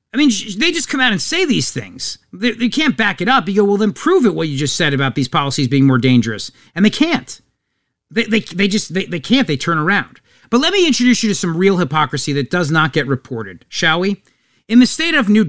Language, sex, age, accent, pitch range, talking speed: English, male, 40-59, American, 135-215 Hz, 250 wpm